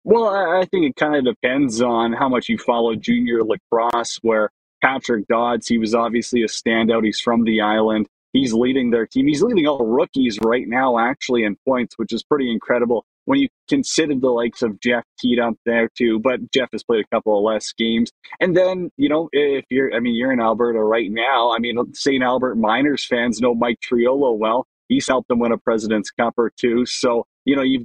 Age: 20-39